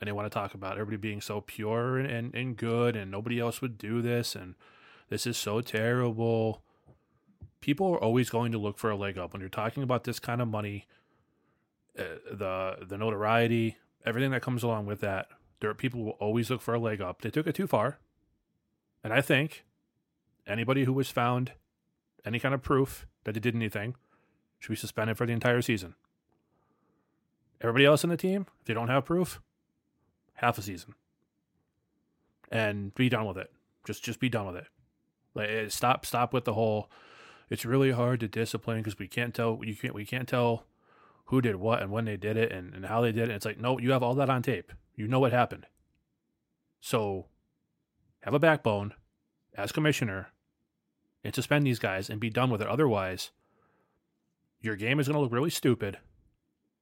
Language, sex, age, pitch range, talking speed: English, male, 20-39, 105-125 Hz, 195 wpm